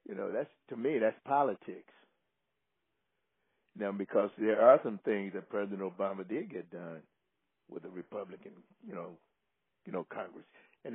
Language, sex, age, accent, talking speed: English, male, 60-79, American, 155 wpm